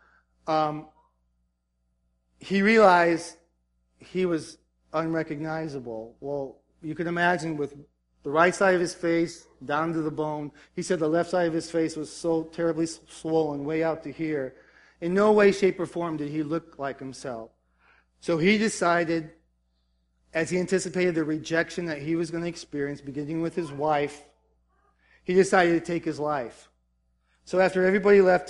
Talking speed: 160 wpm